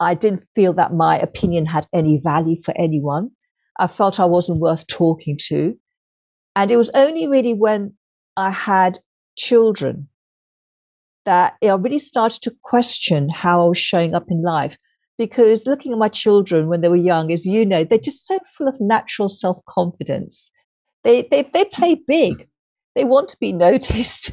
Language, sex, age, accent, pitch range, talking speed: English, female, 50-69, British, 170-230 Hz, 170 wpm